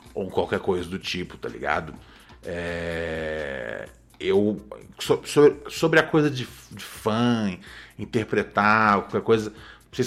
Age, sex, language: 40-59, male, Portuguese